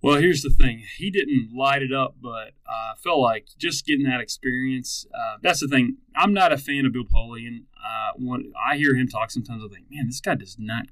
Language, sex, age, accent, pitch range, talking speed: English, male, 30-49, American, 120-140 Hz, 235 wpm